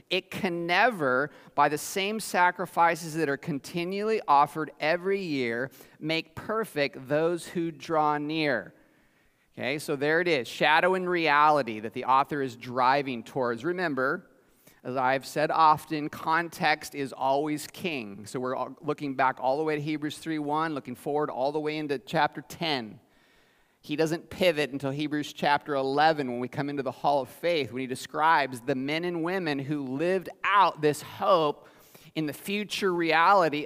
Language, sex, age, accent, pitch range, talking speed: English, male, 30-49, American, 130-165 Hz, 160 wpm